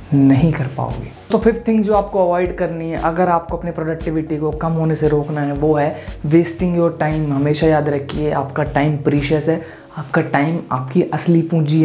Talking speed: 190 wpm